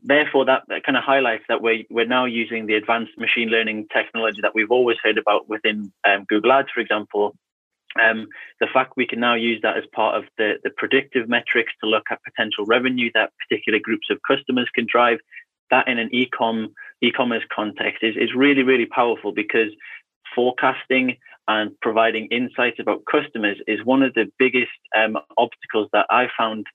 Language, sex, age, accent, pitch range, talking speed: English, male, 30-49, British, 110-125 Hz, 185 wpm